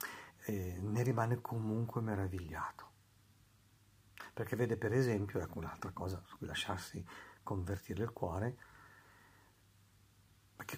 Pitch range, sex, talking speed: 95-110 Hz, male, 105 wpm